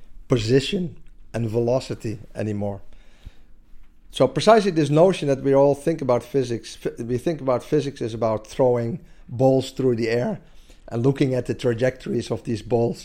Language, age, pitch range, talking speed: Danish, 50-69, 105-135 Hz, 150 wpm